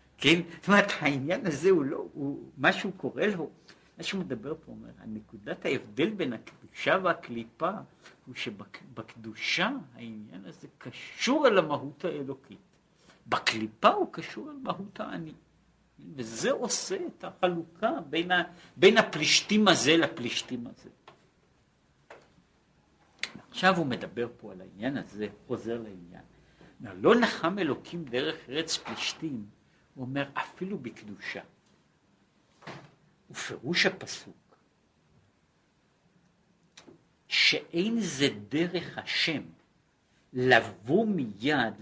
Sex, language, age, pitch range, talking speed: male, Hebrew, 60-79, 115-180 Hz, 55 wpm